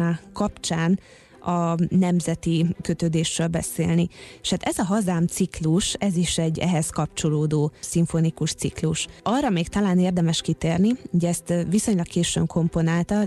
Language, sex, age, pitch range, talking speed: Hungarian, female, 20-39, 165-185 Hz, 125 wpm